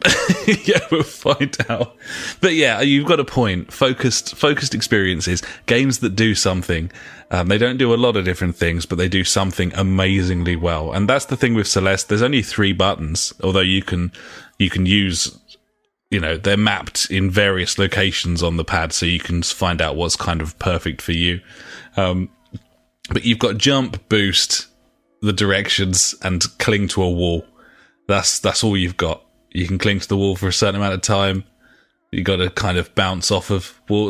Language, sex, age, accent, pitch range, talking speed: English, male, 30-49, British, 90-110 Hz, 190 wpm